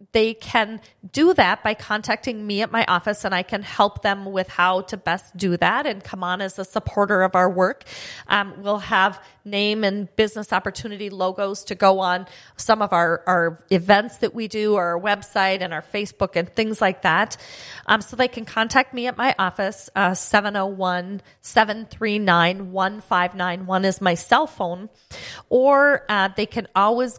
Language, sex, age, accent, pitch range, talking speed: English, female, 30-49, American, 185-210 Hz, 170 wpm